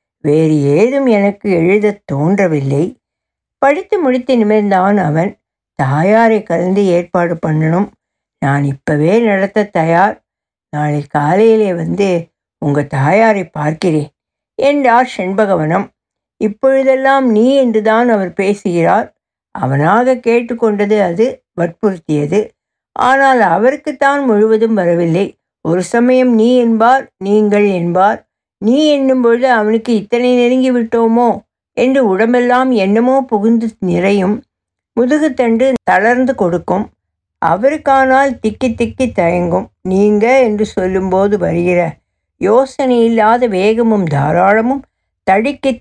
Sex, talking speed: female, 95 wpm